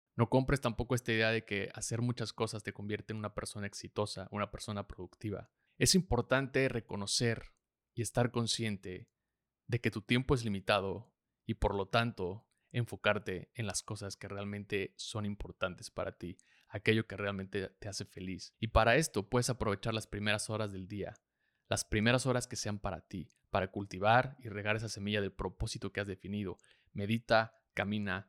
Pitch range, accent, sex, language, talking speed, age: 100-120 Hz, Mexican, male, Spanish, 170 wpm, 30-49